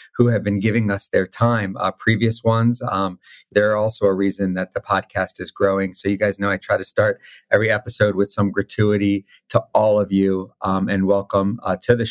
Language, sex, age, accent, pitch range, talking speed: English, male, 30-49, American, 95-105 Hz, 220 wpm